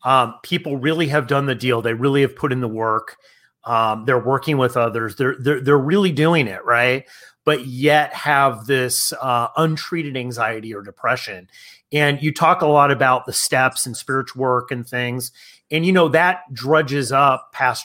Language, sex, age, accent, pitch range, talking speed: English, male, 30-49, American, 130-160 Hz, 185 wpm